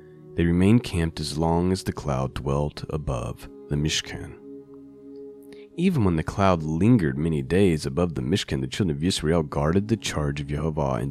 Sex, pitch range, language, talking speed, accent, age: male, 75-95 Hz, English, 175 wpm, American, 30-49